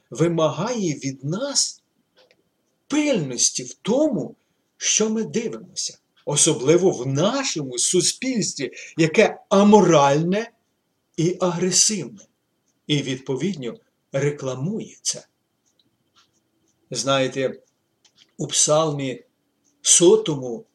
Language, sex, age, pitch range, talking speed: Ukrainian, male, 50-69, 130-175 Hz, 70 wpm